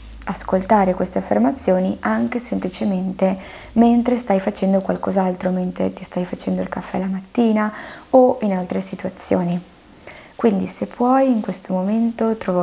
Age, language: 20-39, Italian